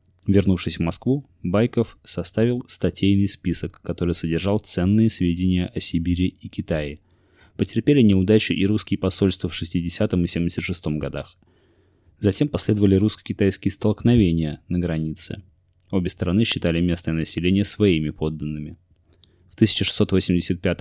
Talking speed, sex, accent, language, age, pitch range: 115 wpm, male, native, Russian, 20-39, 85-100 Hz